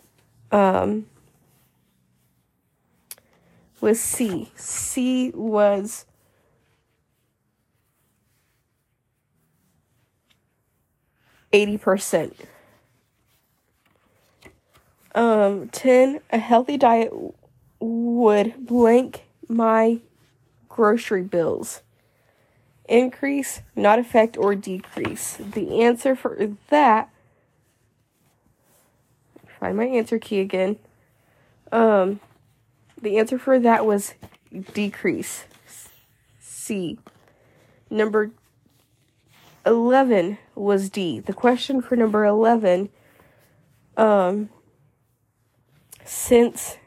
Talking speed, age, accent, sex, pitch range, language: 65 wpm, 20-39, American, female, 135-230 Hz, English